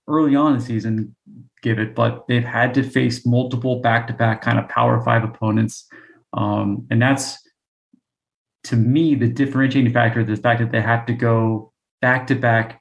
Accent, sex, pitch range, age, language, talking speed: American, male, 110-125 Hz, 30-49, English, 165 wpm